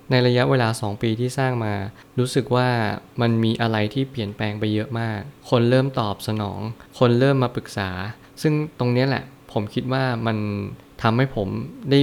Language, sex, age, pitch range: Thai, male, 20-39, 105-125 Hz